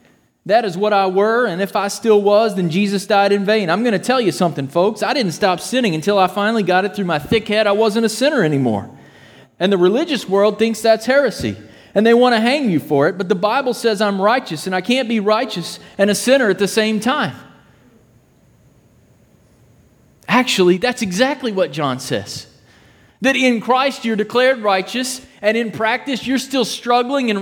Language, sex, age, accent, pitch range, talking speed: English, male, 30-49, American, 195-240 Hz, 200 wpm